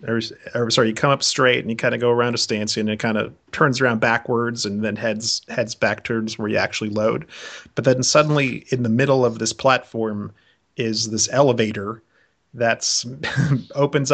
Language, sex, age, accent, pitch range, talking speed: English, male, 30-49, American, 110-130 Hz, 185 wpm